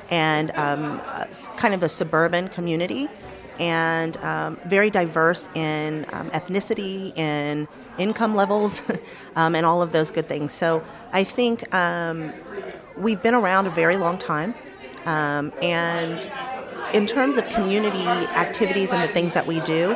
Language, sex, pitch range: English, female, 155-205 Hz